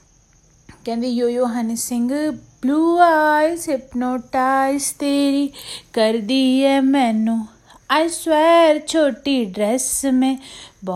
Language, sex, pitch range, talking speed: Hindi, female, 235-285 Hz, 80 wpm